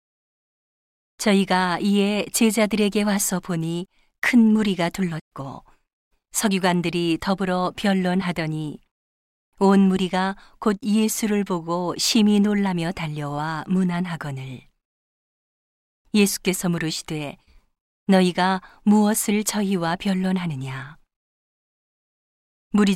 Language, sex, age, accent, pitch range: Korean, female, 40-59, native, 165-200 Hz